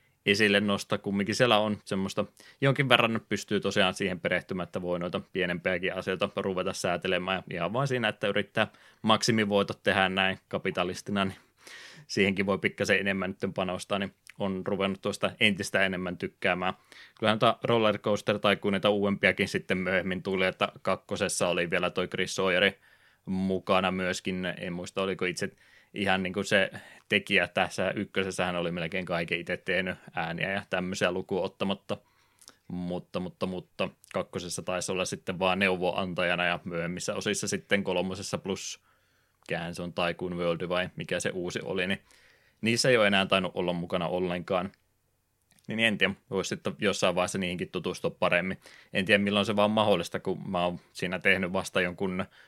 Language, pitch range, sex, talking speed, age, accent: Finnish, 90-100 Hz, male, 155 wpm, 20-39, native